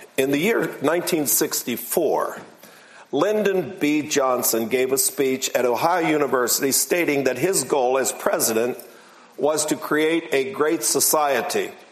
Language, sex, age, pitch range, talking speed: English, male, 50-69, 120-145 Hz, 125 wpm